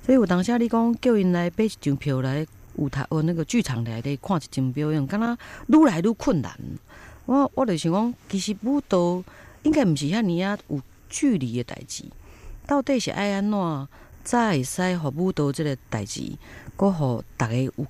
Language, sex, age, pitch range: Chinese, female, 40-59, 130-200 Hz